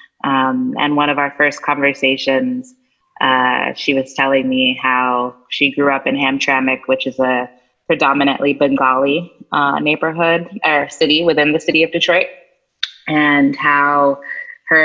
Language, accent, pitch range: English, American, 145-175 Hz